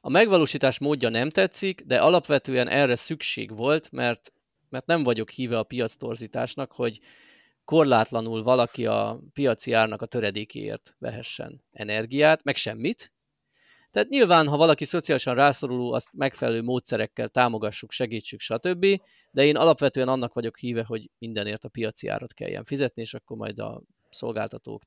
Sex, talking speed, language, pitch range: male, 145 wpm, Hungarian, 115-150 Hz